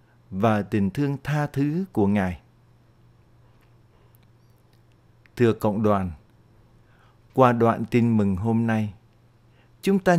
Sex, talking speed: male, 105 wpm